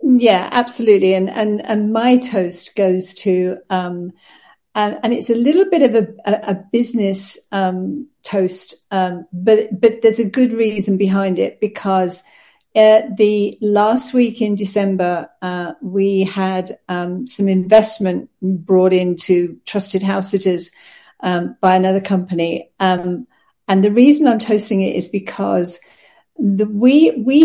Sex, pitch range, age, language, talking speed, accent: female, 190-230 Hz, 50-69, English, 145 wpm, British